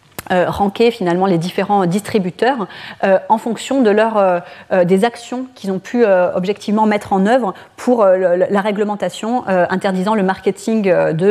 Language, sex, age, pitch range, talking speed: French, female, 30-49, 170-205 Hz, 175 wpm